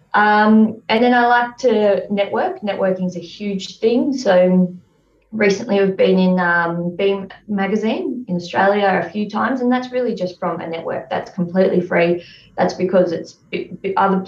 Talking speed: 160 wpm